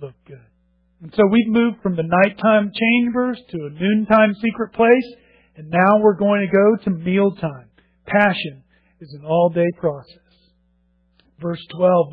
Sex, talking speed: male, 150 wpm